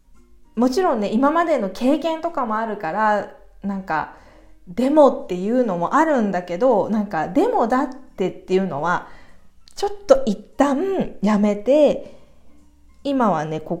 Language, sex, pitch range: Japanese, female, 180-275 Hz